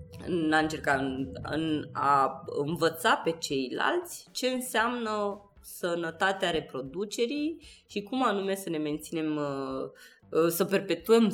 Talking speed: 90 wpm